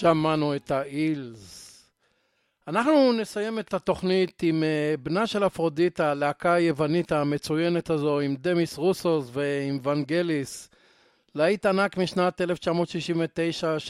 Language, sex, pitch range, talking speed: Hebrew, male, 150-180 Hz, 105 wpm